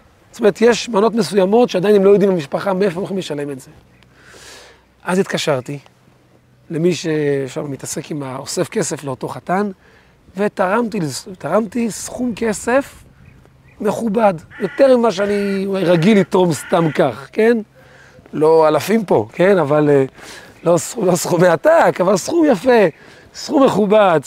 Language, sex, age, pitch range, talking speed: Hebrew, male, 40-59, 150-200 Hz, 130 wpm